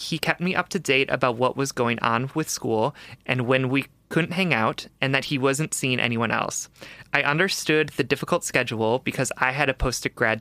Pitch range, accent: 125-155 Hz, American